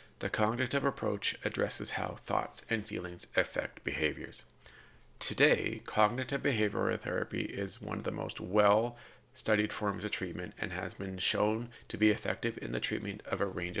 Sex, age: male, 40-59